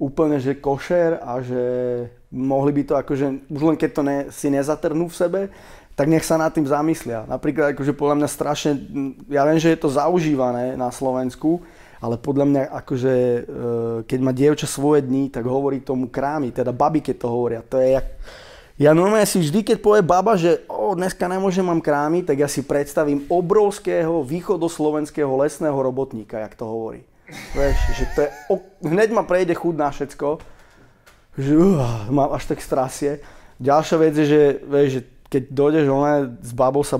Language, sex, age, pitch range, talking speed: Slovak, male, 20-39, 130-160 Hz, 175 wpm